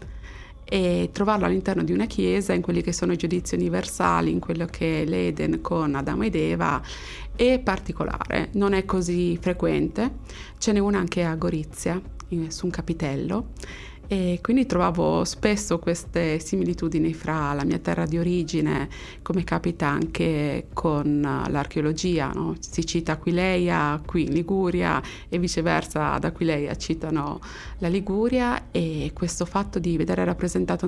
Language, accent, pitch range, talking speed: Italian, native, 155-185 Hz, 140 wpm